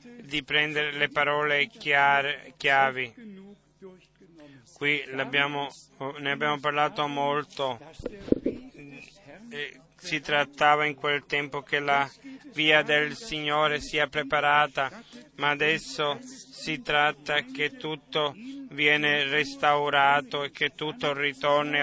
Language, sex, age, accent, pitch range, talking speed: Italian, male, 30-49, native, 145-155 Hz, 95 wpm